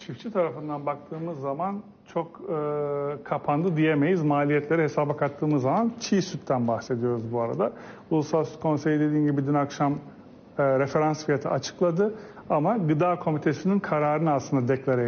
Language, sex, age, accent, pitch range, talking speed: Turkish, male, 40-59, native, 145-185 Hz, 135 wpm